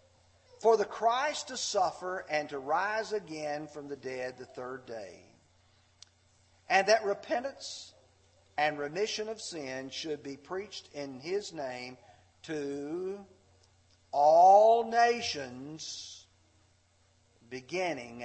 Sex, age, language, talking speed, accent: male, 50-69, English, 105 wpm, American